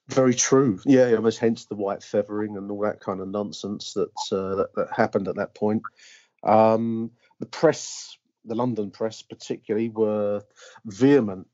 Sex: male